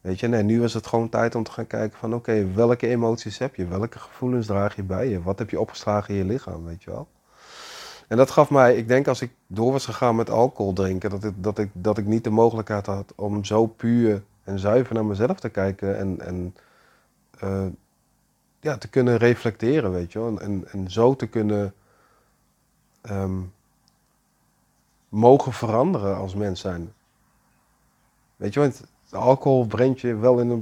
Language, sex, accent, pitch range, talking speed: Dutch, male, Dutch, 100-120 Hz, 195 wpm